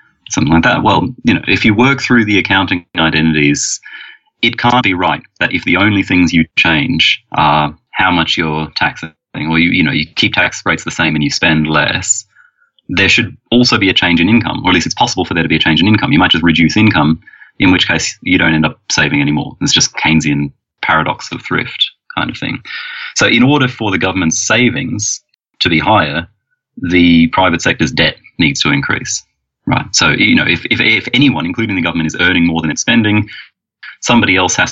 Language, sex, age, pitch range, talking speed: English, male, 30-49, 80-115 Hz, 215 wpm